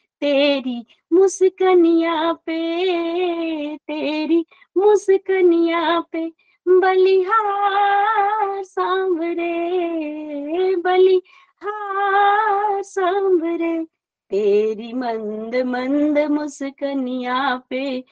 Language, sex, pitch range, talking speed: Hindi, female, 270-355 Hz, 50 wpm